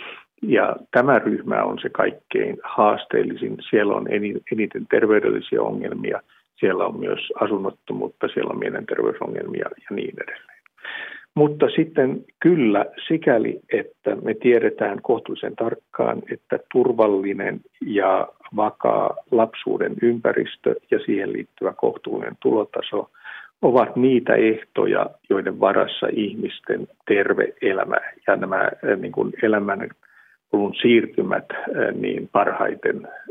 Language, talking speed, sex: Finnish, 100 wpm, male